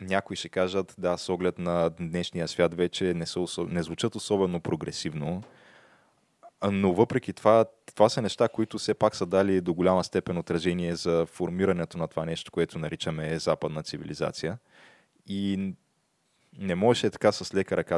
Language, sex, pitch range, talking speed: Bulgarian, male, 85-100 Hz, 160 wpm